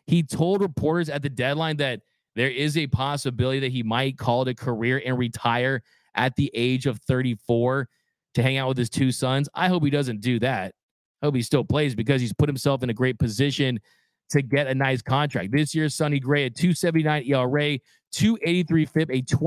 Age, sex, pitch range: 30-49, male, 135-160 Hz